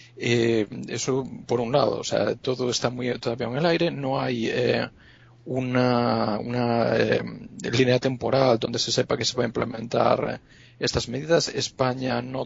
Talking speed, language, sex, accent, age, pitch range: 165 wpm, Spanish, male, Spanish, 40-59, 115-135 Hz